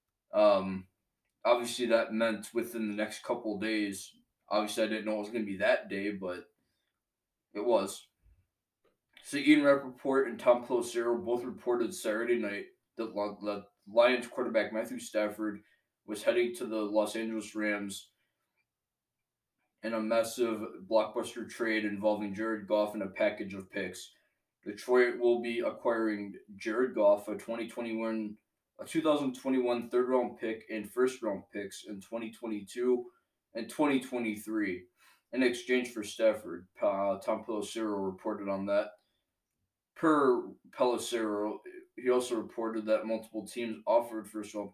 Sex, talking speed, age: male, 135 wpm, 20-39